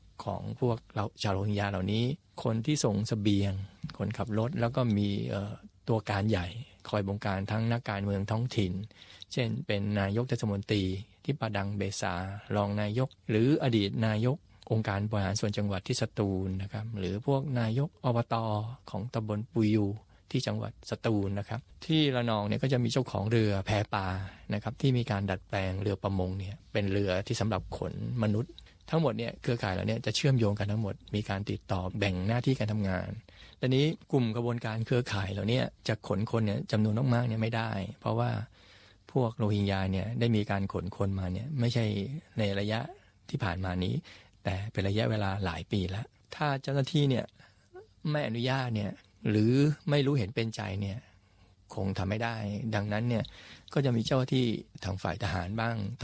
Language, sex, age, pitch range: Thai, male, 20-39, 100-120 Hz